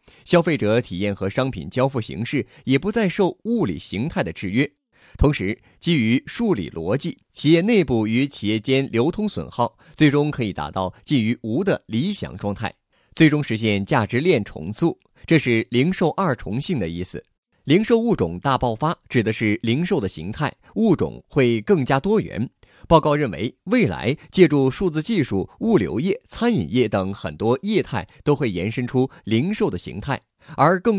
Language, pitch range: Chinese, 115-175 Hz